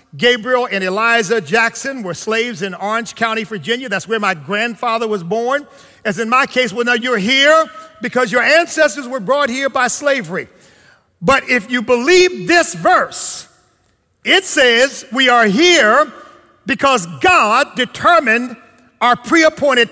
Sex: male